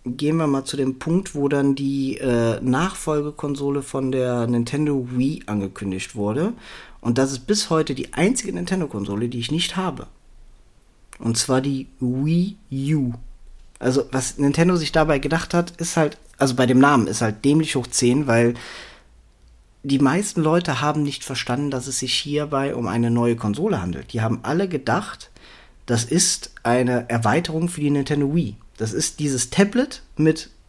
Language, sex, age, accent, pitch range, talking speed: German, male, 40-59, German, 125-170 Hz, 165 wpm